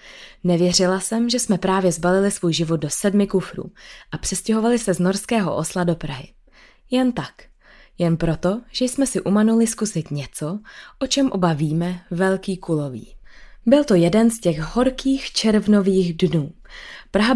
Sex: female